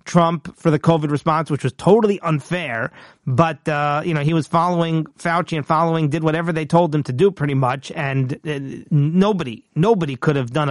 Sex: male